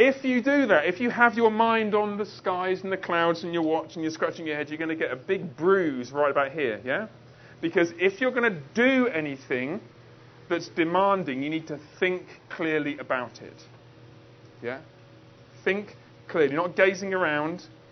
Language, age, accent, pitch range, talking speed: English, 40-59, British, 140-195 Hz, 190 wpm